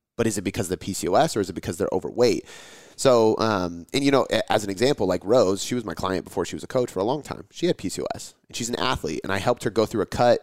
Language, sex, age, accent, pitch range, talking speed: English, male, 30-49, American, 95-115 Hz, 295 wpm